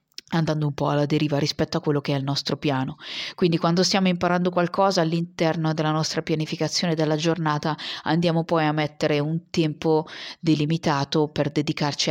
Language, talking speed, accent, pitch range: Italian, 165 wpm, native, 150-175 Hz